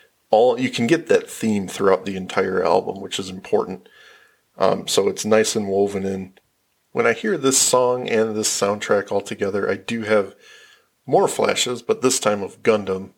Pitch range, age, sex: 100-125 Hz, 40-59, male